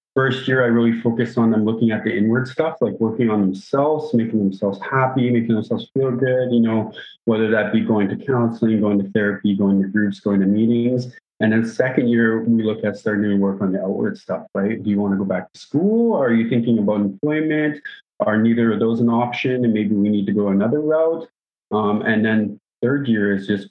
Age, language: 30-49, English